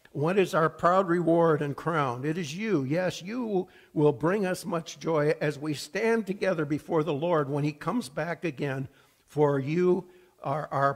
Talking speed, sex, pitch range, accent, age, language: 180 wpm, male, 135-170 Hz, American, 60-79, English